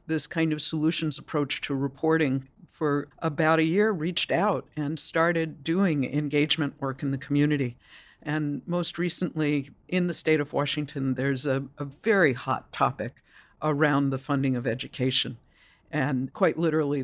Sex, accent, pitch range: female, American, 135-160 Hz